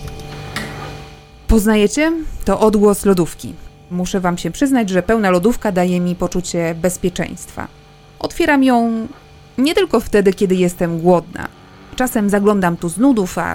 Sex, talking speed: female, 130 wpm